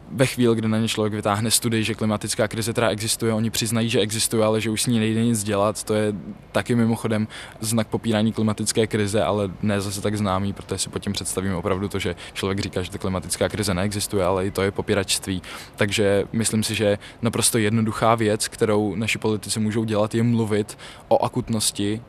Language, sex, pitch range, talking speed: Czech, male, 100-115 Hz, 200 wpm